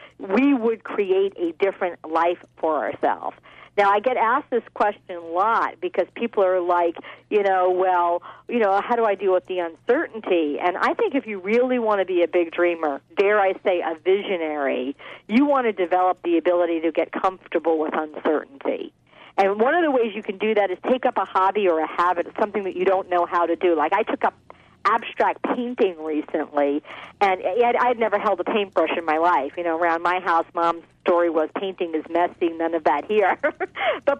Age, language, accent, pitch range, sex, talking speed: 50-69, English, American, 175-240 Hz, female, 205 wpm